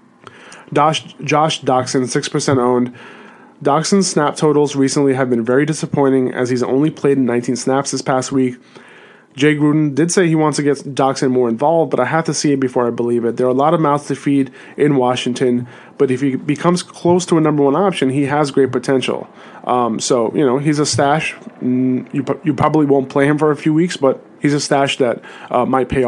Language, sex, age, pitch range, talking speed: English, male, 30-49, 130-150 Hz, 210 wpm